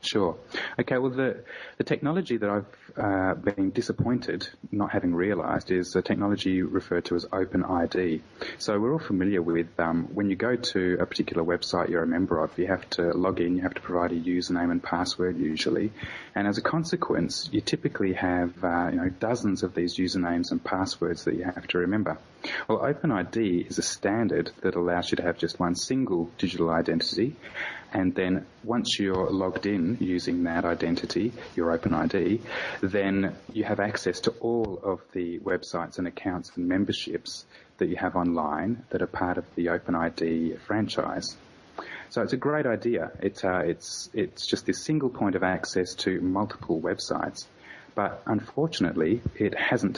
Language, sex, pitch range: English, male, 85-105 Hz